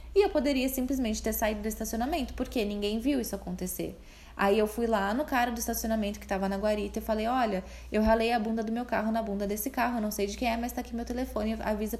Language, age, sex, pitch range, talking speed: Portuguese, 10-29, female, 195-245 Hz, 250 wpm